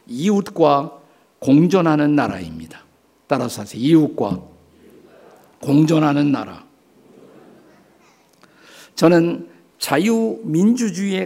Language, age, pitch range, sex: Korean, 50-69, 150-200 Hz, male